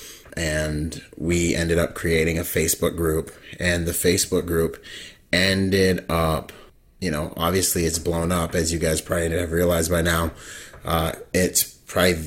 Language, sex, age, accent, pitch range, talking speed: English, male, 30-49, American, 85-95 Hz, 150 wpm